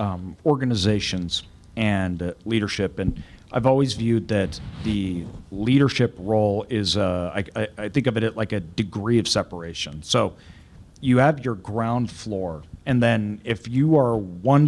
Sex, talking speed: male, 155 wpm